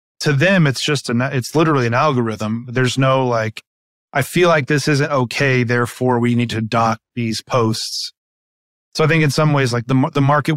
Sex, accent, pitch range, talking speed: male, American, 120-145 Hz, 200 wpm